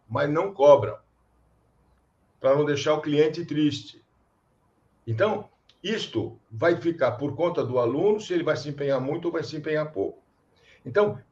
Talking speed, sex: 155 wpm, male